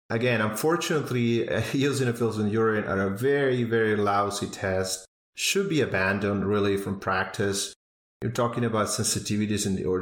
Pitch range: 95-115 Hz